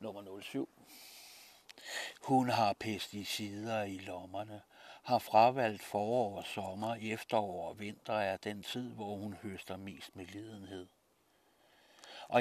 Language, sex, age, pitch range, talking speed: Danish, male, 60-79, 100-115 Hz, 120 wpm